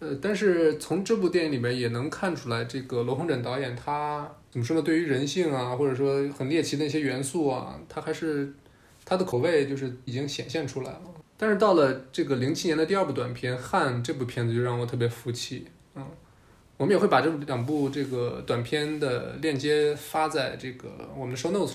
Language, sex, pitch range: Chinese, male, 125-155 Hz